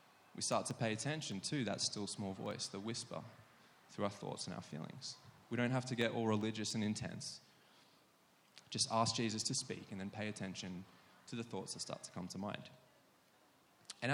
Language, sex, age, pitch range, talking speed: English, male, 20-39, 110-130 Hz, 195 wpm